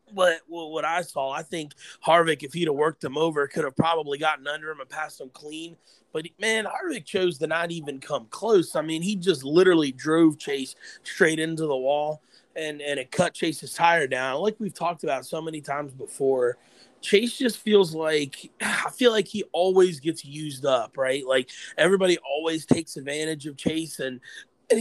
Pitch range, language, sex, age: 145-175 Hz, English, male, 30-49